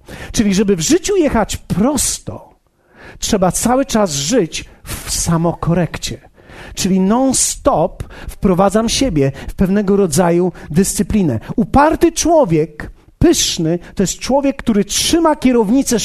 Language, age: Polish, 40-59